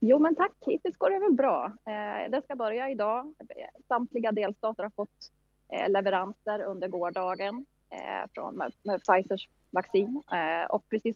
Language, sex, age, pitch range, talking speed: English, female, 20-39, 175-215 Hz, 140 wpm